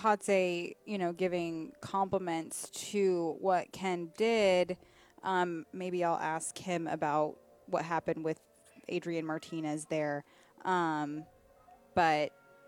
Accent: American